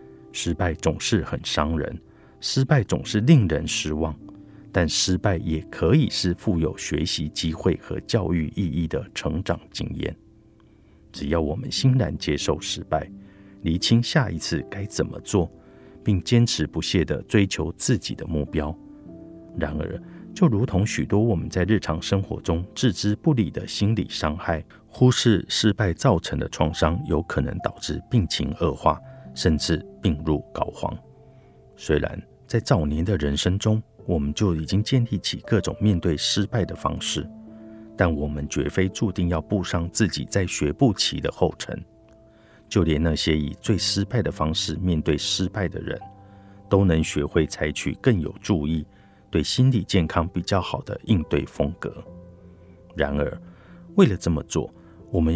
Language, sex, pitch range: Chinese, male, 80-110 Hz